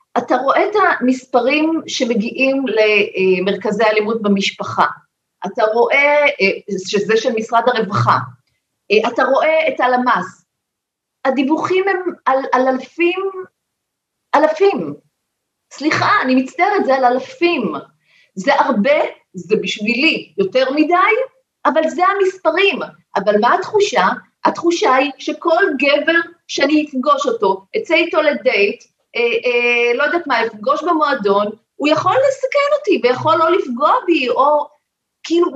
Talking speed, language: 115 wpm, Hebrew